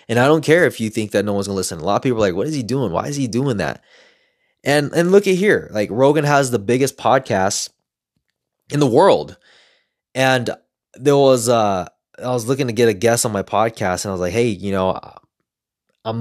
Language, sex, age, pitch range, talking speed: English, male, 20-39, 100-135 Hz, 235 wpm